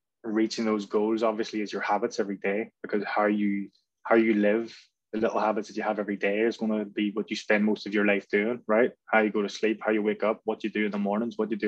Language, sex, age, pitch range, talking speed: English, male, 20-39, 105-115 Hz, 275 wpm